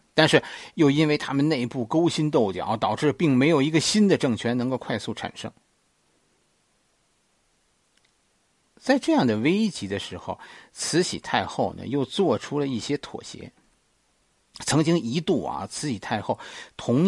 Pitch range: 125-195 Hz